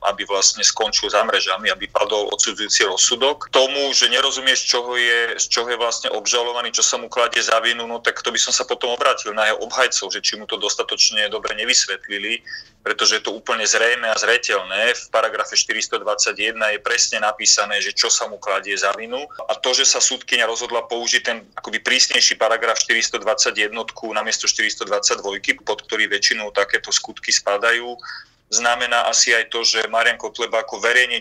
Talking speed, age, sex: 175 wpm, 30-49, male